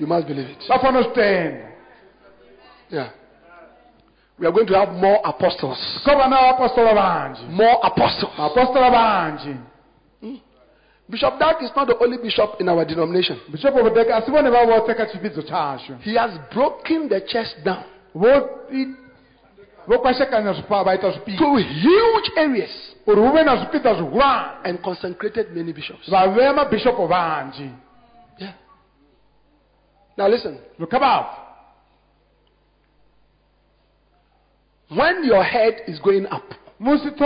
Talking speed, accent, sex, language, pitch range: 95 wpm, Nigerian, male, English, 180-260 Hz